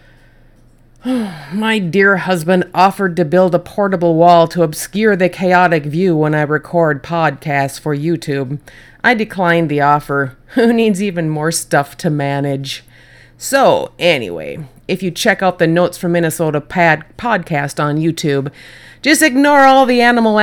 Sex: female